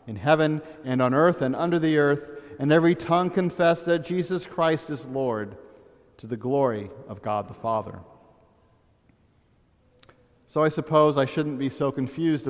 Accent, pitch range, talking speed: American, 125-170 Hz, 160 wpm